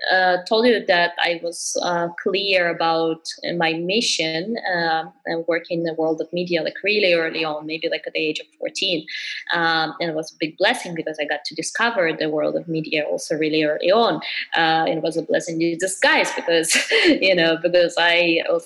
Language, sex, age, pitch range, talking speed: English, female, 20-39, 165-210 Hz, 205 wpm